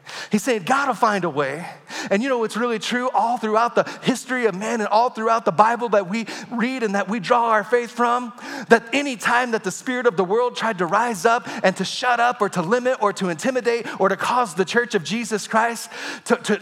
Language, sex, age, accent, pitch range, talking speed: English, male, 30-49, American, 195-235 Hz, 240 wpm